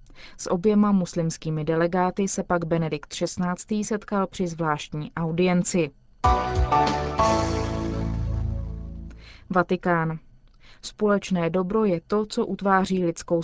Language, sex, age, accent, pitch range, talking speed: Czech, female, 20-39, native, 170-200 Hz, 90 wpm